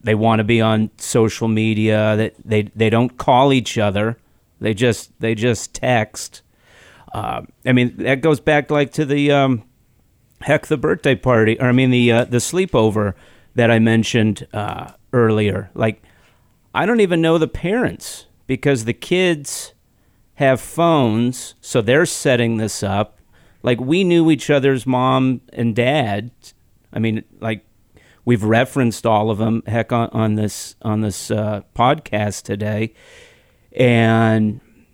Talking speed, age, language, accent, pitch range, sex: 155 wpm, 40-59, English, American, 105-130 Hz, male